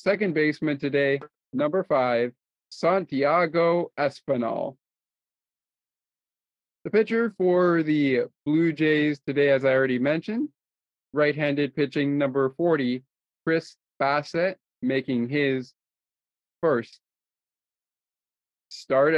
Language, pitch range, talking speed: English, 125-170 Hz, 90 wpm